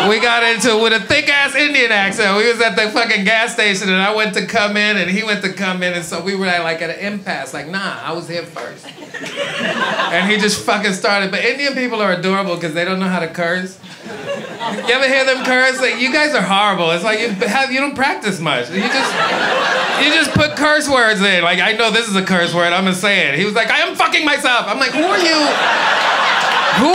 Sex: male